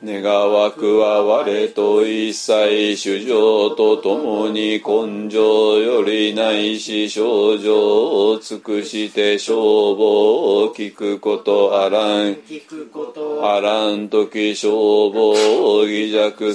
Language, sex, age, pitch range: Japanese, male, 40-59, 105-155 Hz